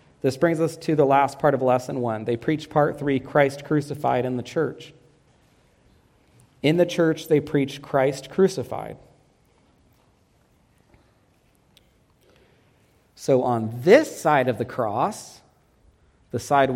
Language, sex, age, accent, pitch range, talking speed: English, male, 40-59, American, 125-155 Hz, 125 wpm